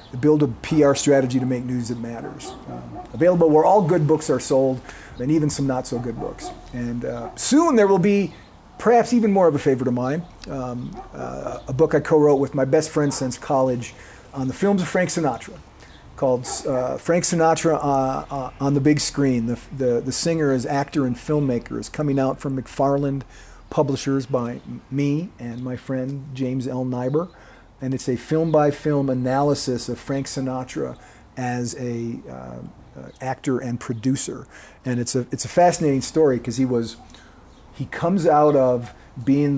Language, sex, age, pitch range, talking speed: English, male, 40-59, 125-150 Hz, 175 wpm